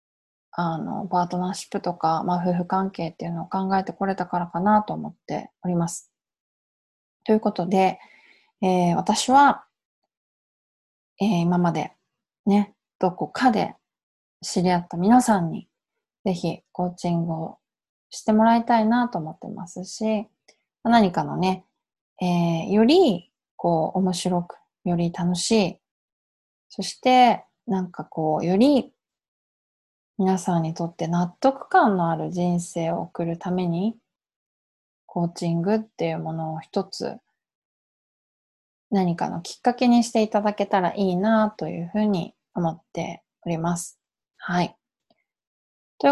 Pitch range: 175-220 Hz